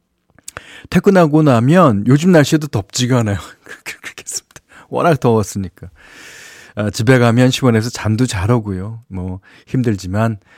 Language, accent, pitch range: Korean, native, 110-160 Hz